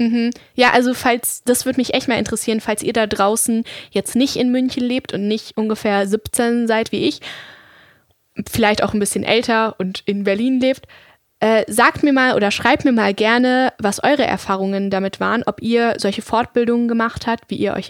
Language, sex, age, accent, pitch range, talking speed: German, female, 10-29, German, 205-240 Hz, 190 wpm